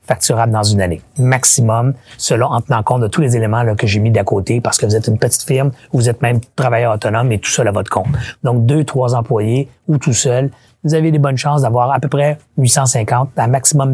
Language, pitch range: French, 115-145 Hz